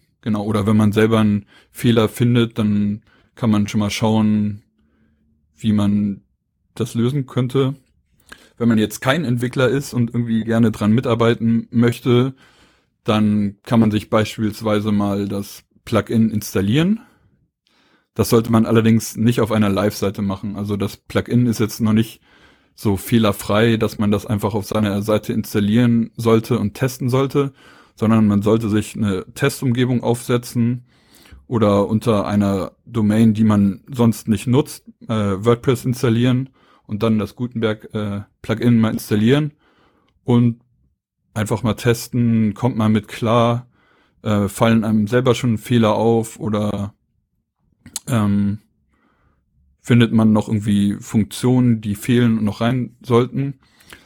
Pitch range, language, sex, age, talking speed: 105-120 Hz, German, male, 20-39, 140 wpm